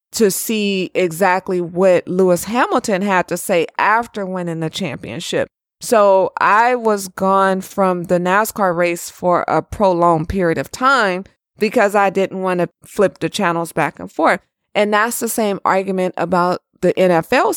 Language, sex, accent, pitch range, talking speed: English, female, American, 185-240 Hz, 155 wpm